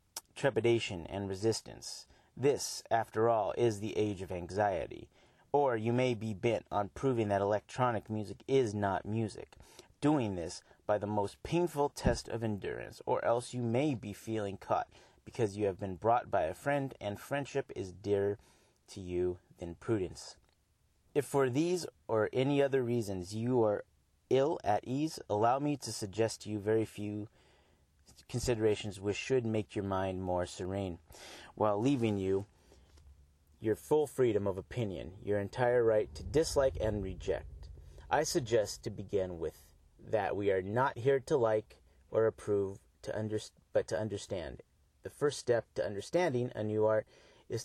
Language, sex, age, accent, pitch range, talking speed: English, male, 30-49, American, 100-125 Hz, 160 wpm